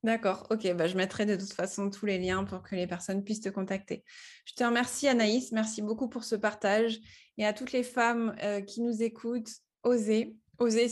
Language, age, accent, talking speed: French, 20-39, French, 205 wpm